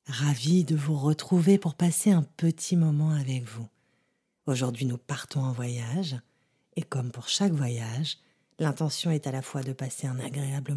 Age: 40-59